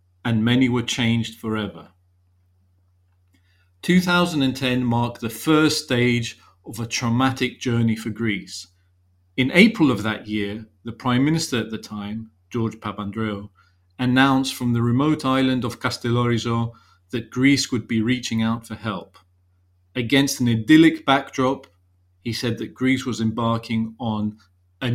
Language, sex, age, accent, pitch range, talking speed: English, male, 40-59, British, 95-130 Hz, 135 wpm